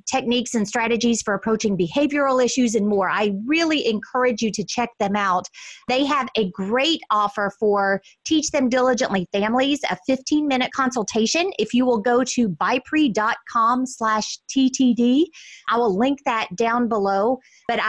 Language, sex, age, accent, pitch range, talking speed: English, female, 30-49, American, 205-260 Hz, 150 wpm